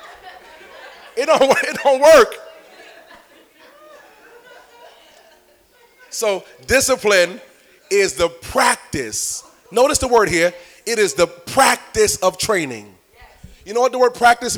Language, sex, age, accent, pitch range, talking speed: English, male, 30-49, American, 190-295 Hz, 105 wpm